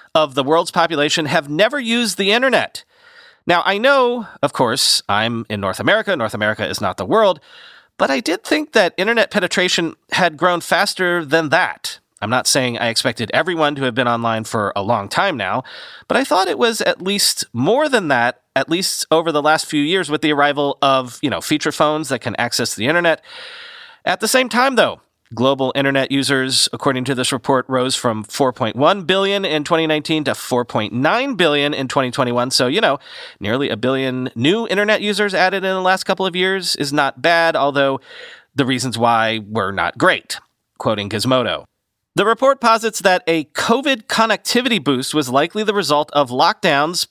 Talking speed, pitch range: 185 wpm, 130-195 Hz